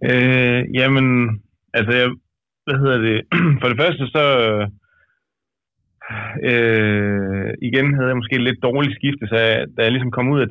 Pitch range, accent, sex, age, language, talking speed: 100-125 Hz, native, male, 30-49, Danish, 155 wpm